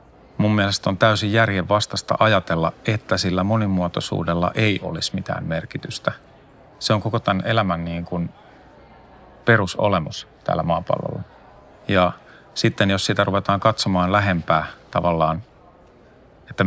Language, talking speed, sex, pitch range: Finnish, 115 wpm, male, 90-105 Hz